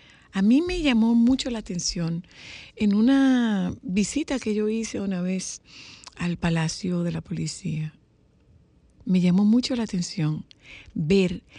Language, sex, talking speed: Spanish, female, 135 wpm